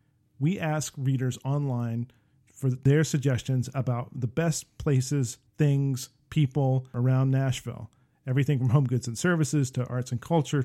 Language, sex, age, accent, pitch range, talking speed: English, male, 40-59, American, 125-150 Hz, 140 wpm